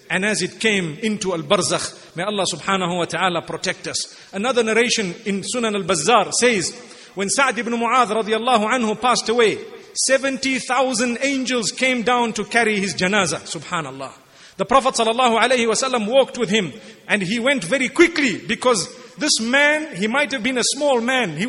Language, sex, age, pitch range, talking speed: English, male, 40-59, 220-280 Hz, 170 wpm